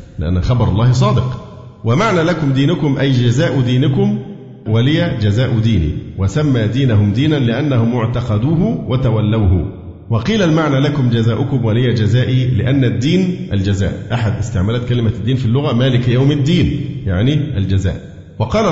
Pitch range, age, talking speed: 110-140 Hz, 50-69, 130 wpm